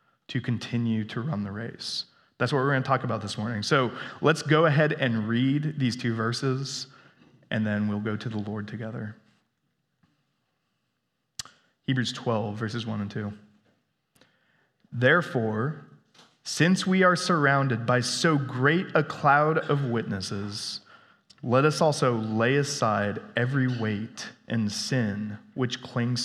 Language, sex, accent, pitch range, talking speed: English, male, American, 110-150 Hz, 135 wpm